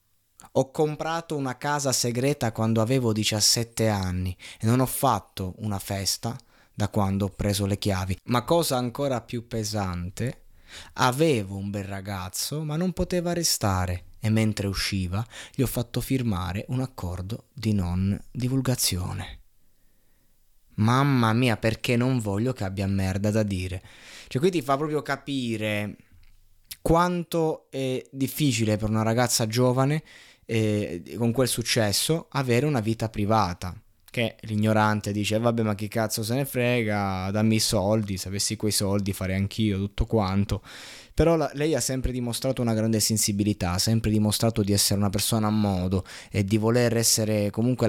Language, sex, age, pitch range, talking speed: Italian, male, 20-39, 100-125 Hz, 155 wpm